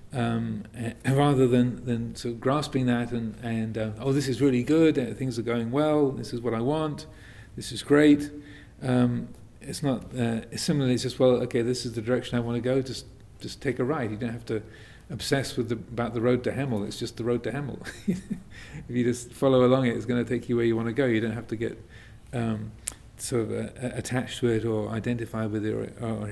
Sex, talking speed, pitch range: male, 235 wpm, 115-130 Hz